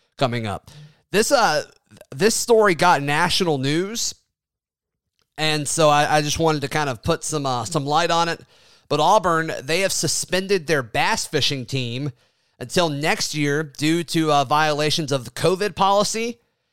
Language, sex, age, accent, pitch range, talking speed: English, male, 30-49, American, 135-160 Hz, 160 wpm